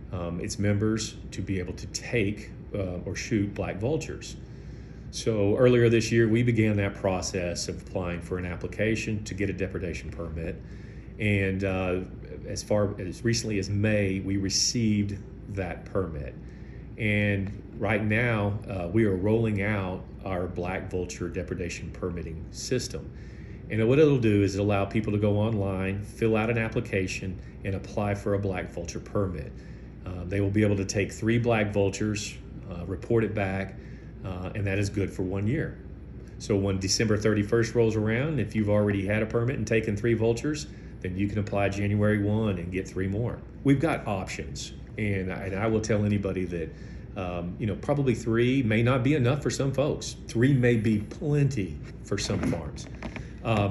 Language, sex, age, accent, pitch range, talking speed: English, male, 40-59, American, 95-115 Hz, 175 wpm